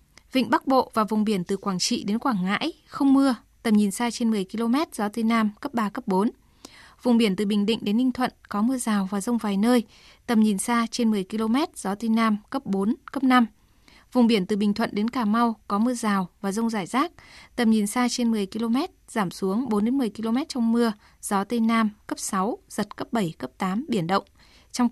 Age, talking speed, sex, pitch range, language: 20-39, 235 wpm, female, 205-245 Hz, Vietnamese